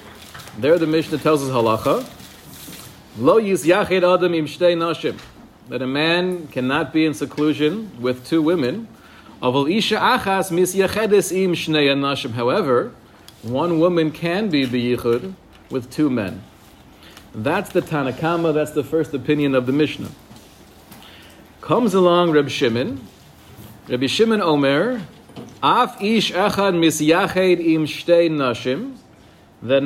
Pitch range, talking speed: 135-175 Hz, 105 wpm